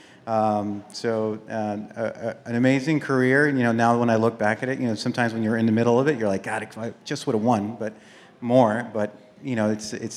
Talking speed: 255 wpm